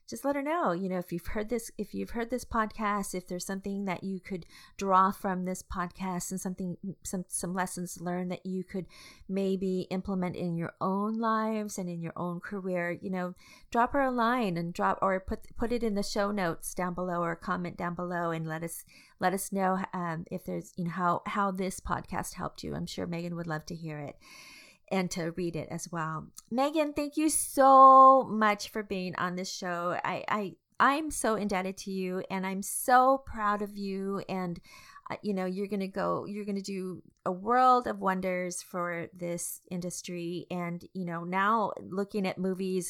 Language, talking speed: English, 205 wpm